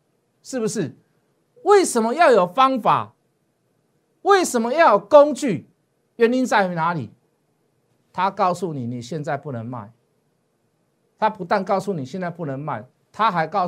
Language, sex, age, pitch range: Chinese, male, 50-69, 145-205 Hz